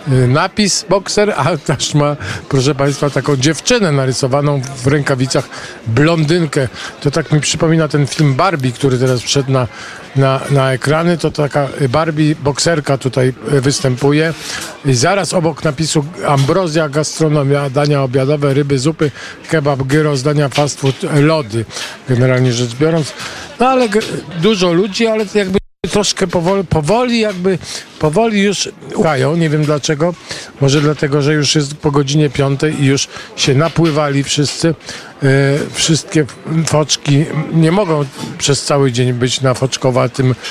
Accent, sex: native, male